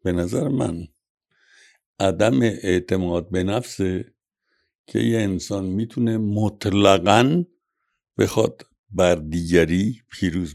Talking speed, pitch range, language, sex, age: 90 wpm, 90-115 Hz, Persian, male, 60-79